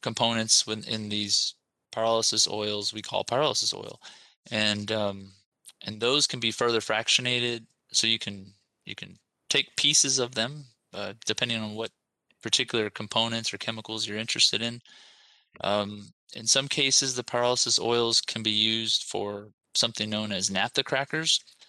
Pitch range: 105-120 Hz